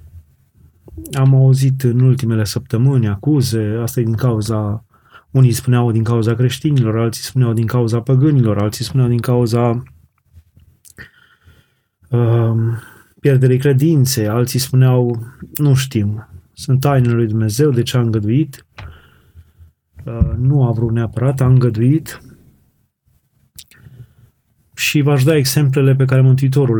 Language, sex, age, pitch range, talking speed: Romanian, male, 20-39, 115-130 Hz, 120 wpm